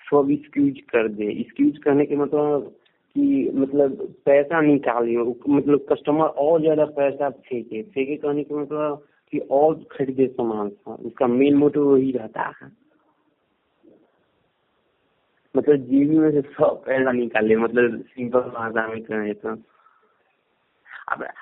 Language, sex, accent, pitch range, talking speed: Hindi, male, native, 125-145 Hz, 125 wpm